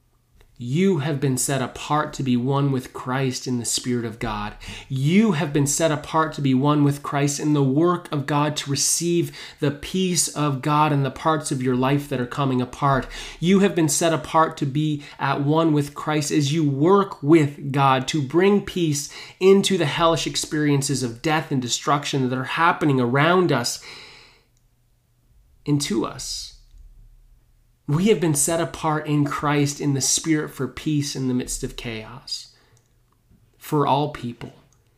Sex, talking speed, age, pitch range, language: male, 170 wpm, 30-49, 120-155 Hz, English